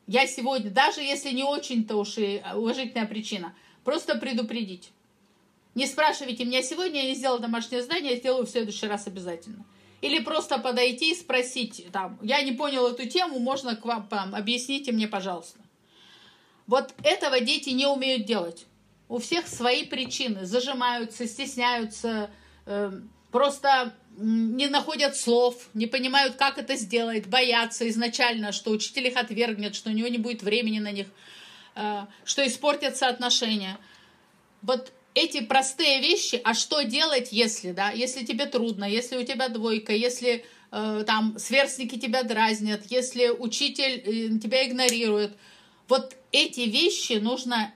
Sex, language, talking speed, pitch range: female, Russian, 140 wpm, 220-265 Hz